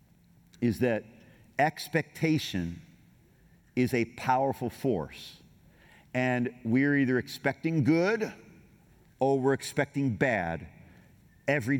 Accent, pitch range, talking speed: American, 130-155 Hz, 85 wpm